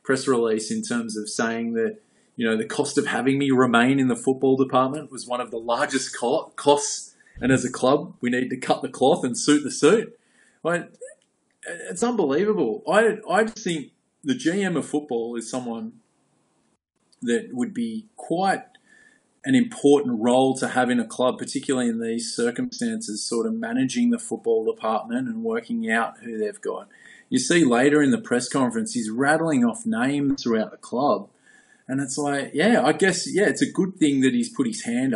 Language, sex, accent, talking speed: English, male, Australian, 190 wpm